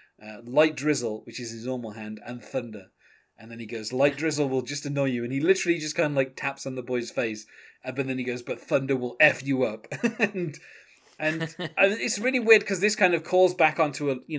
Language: English